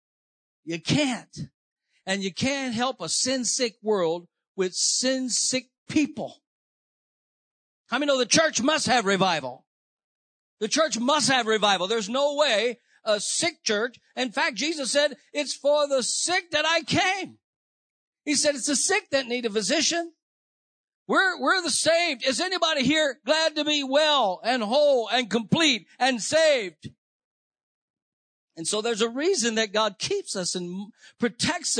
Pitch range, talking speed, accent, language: 185-275 Hz, 150 wpm, American, English